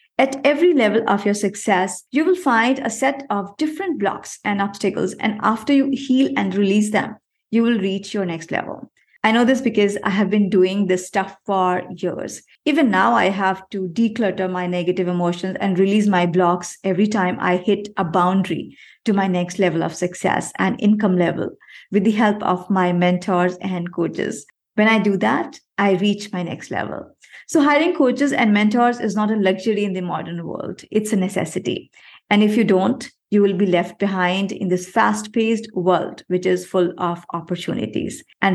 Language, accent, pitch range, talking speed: English, Indian, 185-225 Hz, 190 wpm